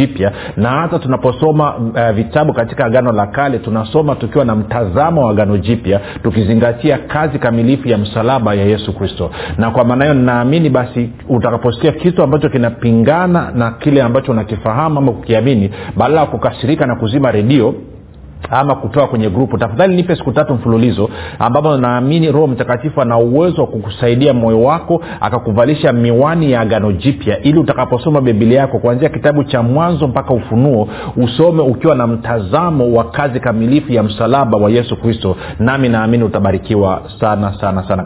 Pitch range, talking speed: 105-135 Hz, 155 wpm